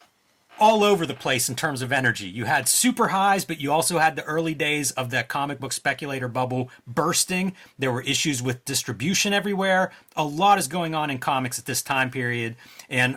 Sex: male